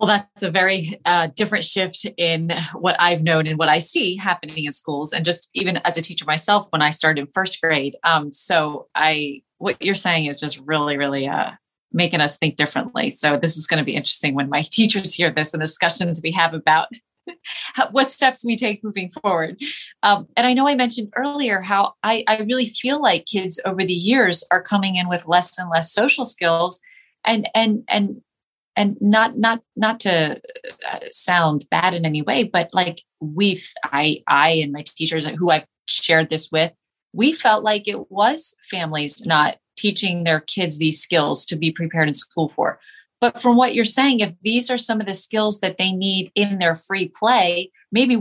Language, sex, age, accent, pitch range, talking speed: English, female, 30-49, American, 160-220 Hz, 200 wpm